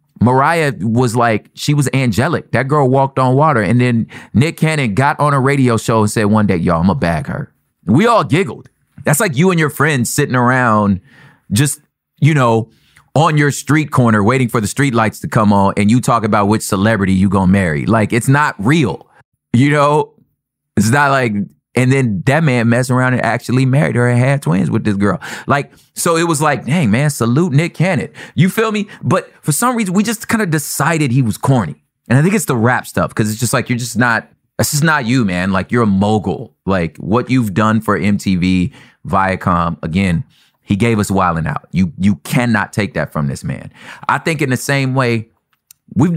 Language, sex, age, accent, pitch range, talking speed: English, male, 30-49, American, 110-145 Hz, 215 wpm